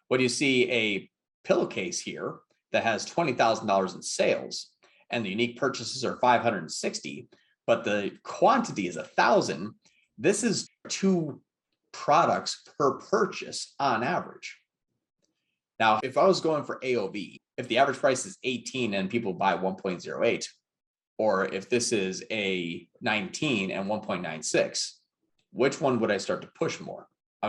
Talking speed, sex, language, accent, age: 145 wpm, male, English, American, 30-49